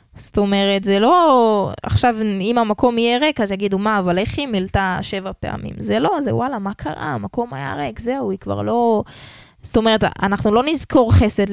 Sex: female